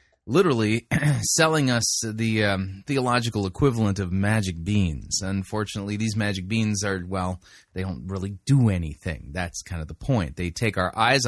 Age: 30-49